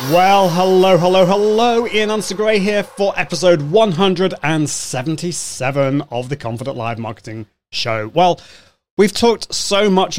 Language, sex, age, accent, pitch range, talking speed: English, male, 30-49, British, 125-180 Hz, 125 wpm